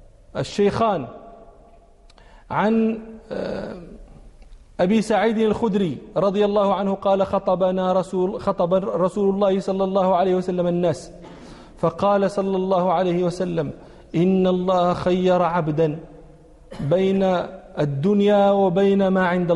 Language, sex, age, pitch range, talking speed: English, male, 40-59, 160-240 Hz, 100 wpm